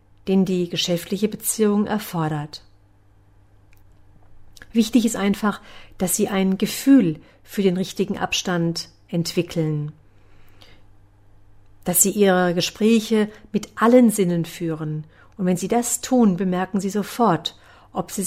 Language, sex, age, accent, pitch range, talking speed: German, female, 50-69, German, 130-200 Hz, 115 wpm